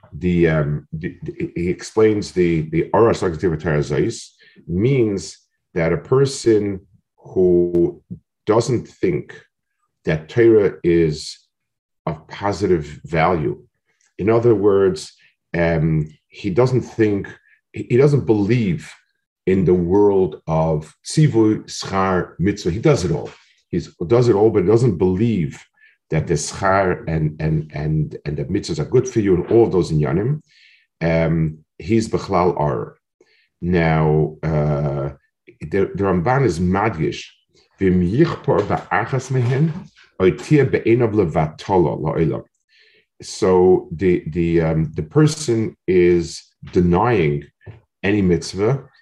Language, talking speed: English, 115 wpm